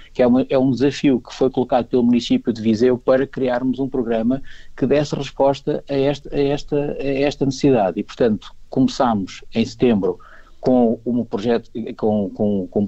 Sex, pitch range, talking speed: male, 115-135 Hz, 145 wpm